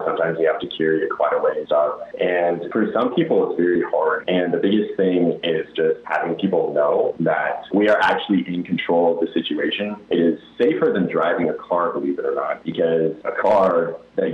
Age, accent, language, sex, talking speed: 30-49, American, English, male, 210 wpm